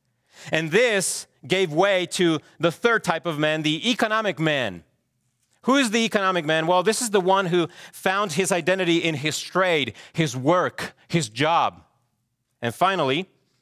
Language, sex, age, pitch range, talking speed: English, male, 30-49, 120-160 Hz, 160 wpm